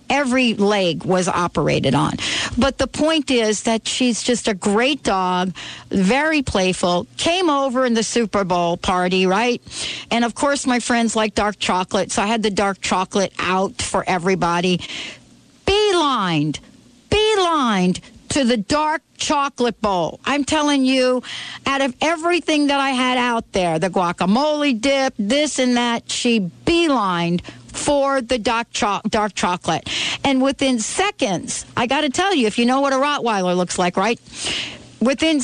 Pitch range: 195-270 Hz